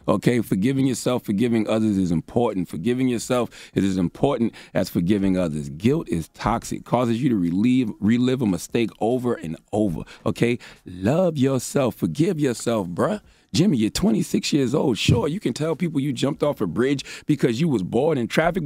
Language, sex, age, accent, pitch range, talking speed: English, male, 30-49, American, 90-125 Hz, 175 wpm